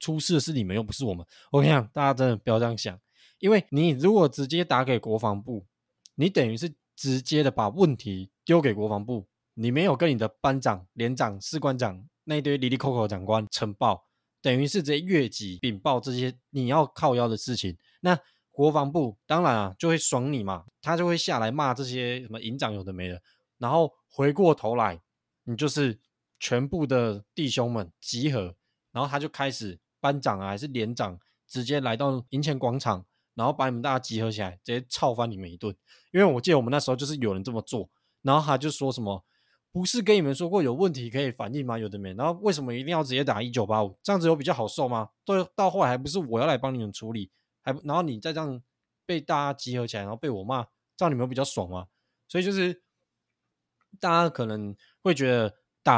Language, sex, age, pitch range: Chinese, male, 20-39, 110-150 Hz